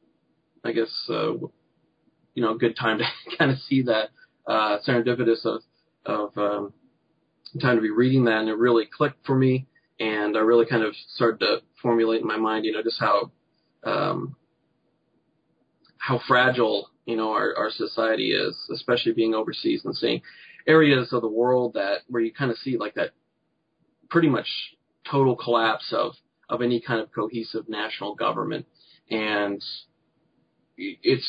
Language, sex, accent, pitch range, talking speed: English, male, American, 110-130 Hz, 160 wpm